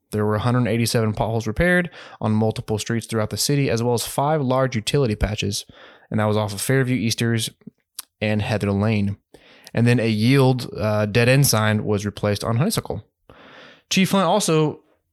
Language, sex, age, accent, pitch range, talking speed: English, male, 20-39, American, 110-145 Hz, 165 wpm